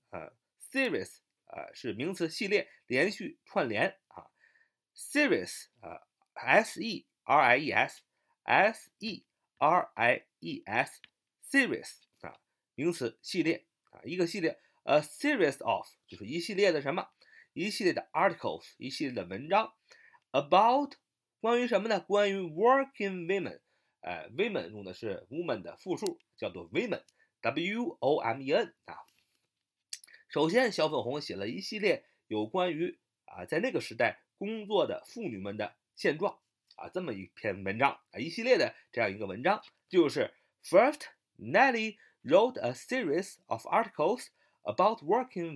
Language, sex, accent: Chinese, male, native